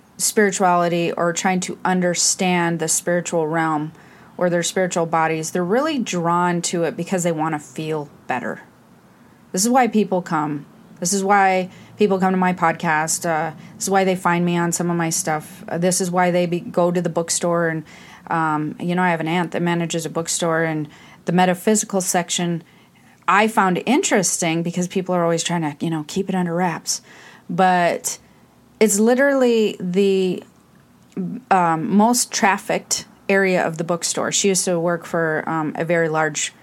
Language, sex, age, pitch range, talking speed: English, female, 30-49, 165-195 Hz, 175 wpm